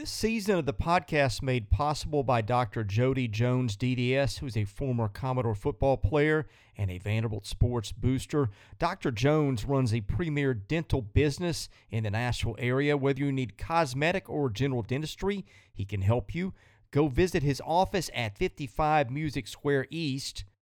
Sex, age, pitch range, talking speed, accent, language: male, 40-59, 105-145 Hz, 155 wpm, American, English